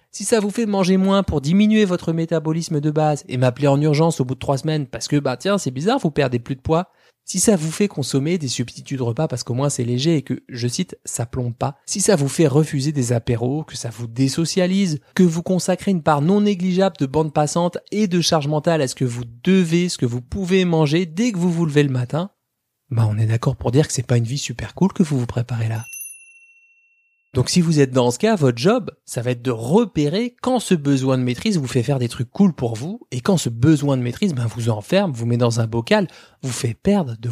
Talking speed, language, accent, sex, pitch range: 255 wpm, French, French, male, 125-190 Hz